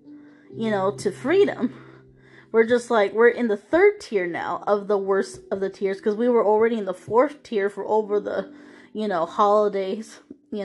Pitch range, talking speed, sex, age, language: 205-245 Hz, 190 wpm, female, 20-39, English